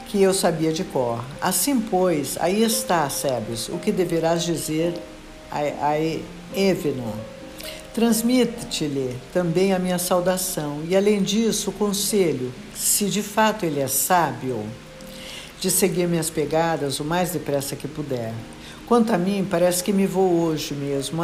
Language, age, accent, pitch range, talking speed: Portuguese, 60-79, Brazilian, 150-195 Hz, 140 wpm